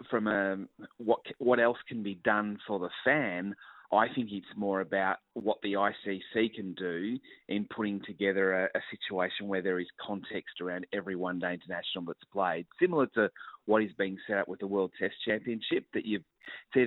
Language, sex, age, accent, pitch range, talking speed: English, male, 30-49, Australian, 100-120 Hz, 185 wpm